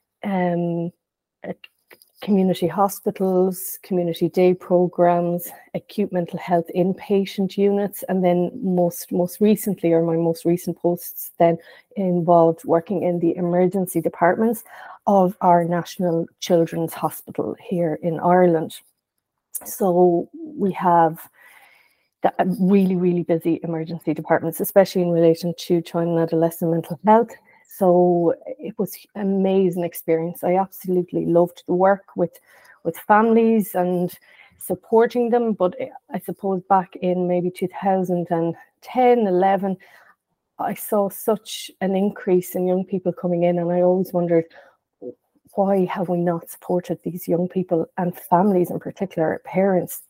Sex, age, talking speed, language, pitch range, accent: female, 30-49, 125 wpm, English, 170-195 Hz, Irish